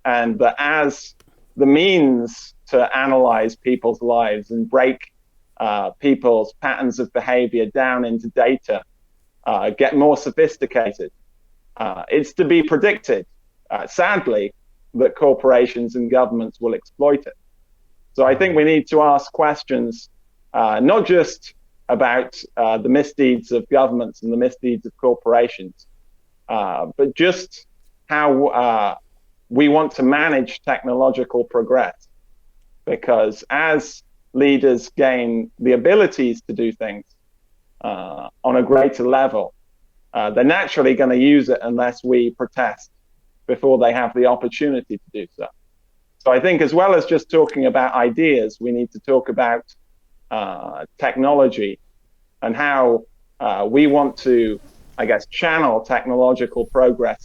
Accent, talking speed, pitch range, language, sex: British, 135 wpm, 120-140 Hz, English, male